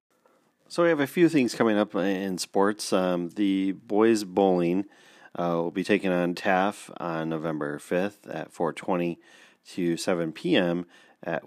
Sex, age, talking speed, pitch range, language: male, 30-49, 150 wpm, 80-95 Hz, English